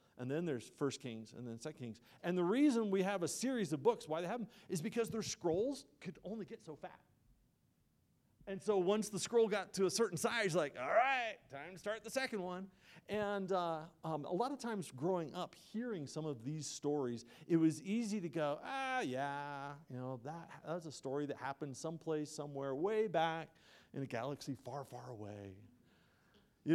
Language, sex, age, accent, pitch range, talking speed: English, male, 40-59, American, 140-210 Hz, 200 wpm